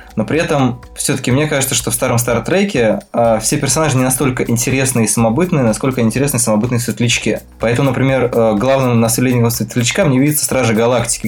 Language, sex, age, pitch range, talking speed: Russian, male, 20-39, 115-130 Hz, 175 wpm